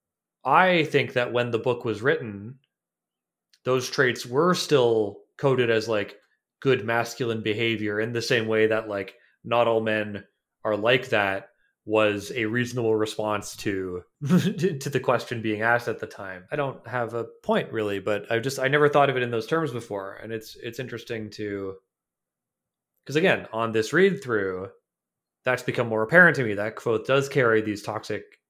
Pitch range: 105-125 Hz